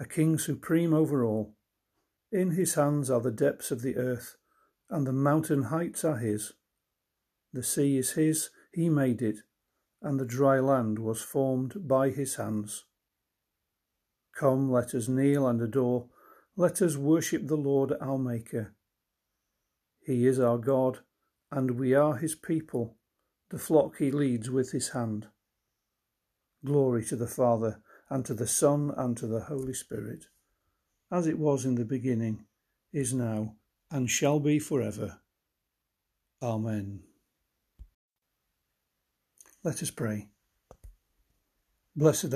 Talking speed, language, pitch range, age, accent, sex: 135 wpm, English, 115-145 Hz, 50-69, British, male